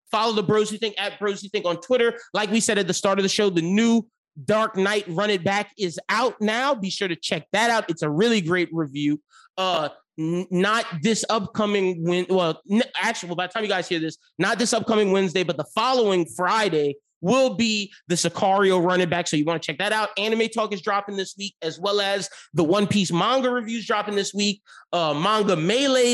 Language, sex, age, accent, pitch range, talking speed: English, male, 30-49, American, 170-210 Hz, 220 wpm